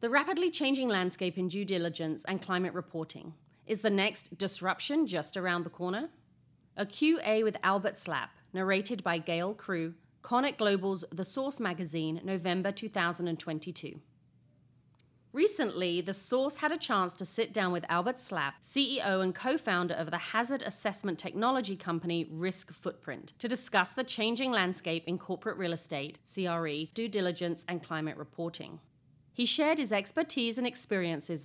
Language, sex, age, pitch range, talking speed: English, female, 30-49, 170-235 Hz, 150 wpm